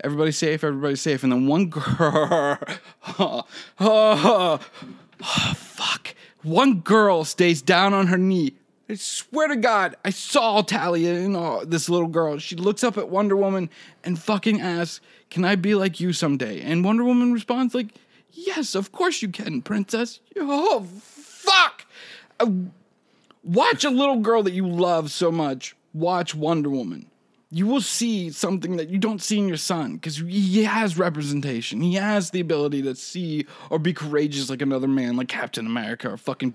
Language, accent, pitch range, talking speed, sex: English, American, 160-220 Hz, 170 wpm, male